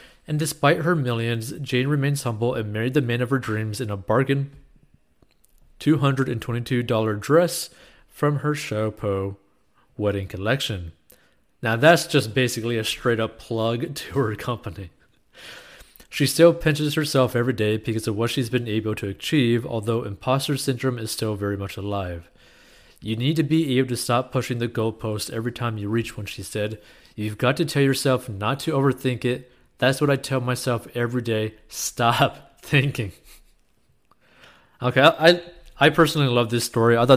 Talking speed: 165 wpm